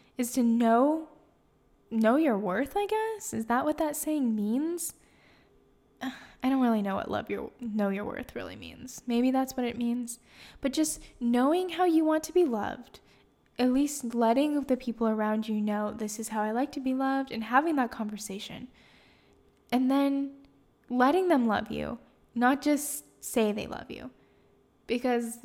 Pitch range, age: 225-275 Hz, 10-29